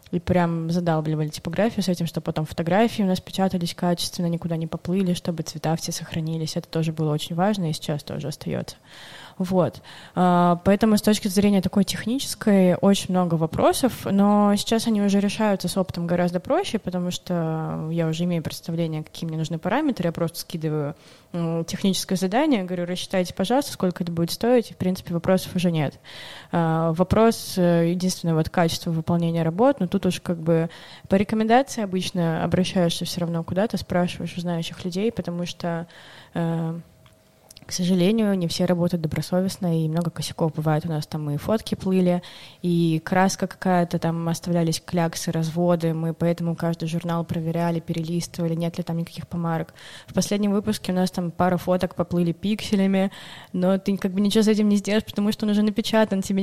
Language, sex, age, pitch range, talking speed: Russian, female, 20-39, 165-195 Hz, 170 wpm